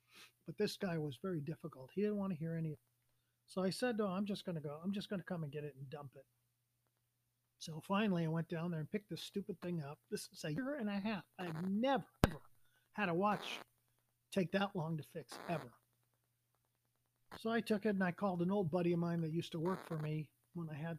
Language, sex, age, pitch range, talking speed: English, male, 40-59, 150-190 Hz, 245 wpm